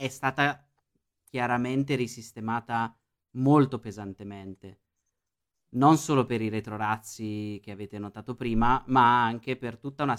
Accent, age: native, 20-39